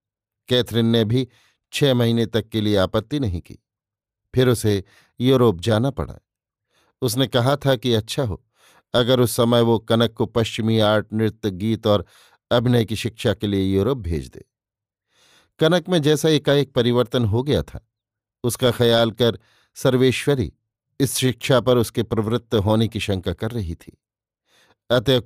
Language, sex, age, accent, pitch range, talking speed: Hindi, male, 50-69, native, 110-130 Hz, 155 wpm